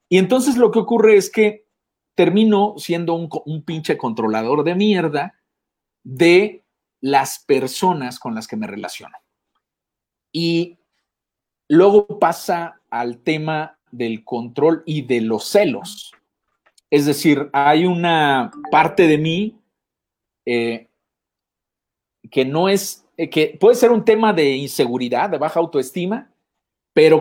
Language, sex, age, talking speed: Spanish, male, 50-69, 125 wpm